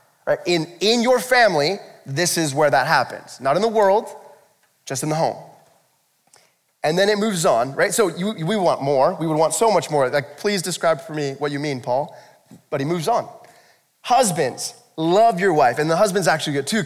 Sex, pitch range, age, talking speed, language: male, 150-205 Hz, 20-39, 200 wpm, English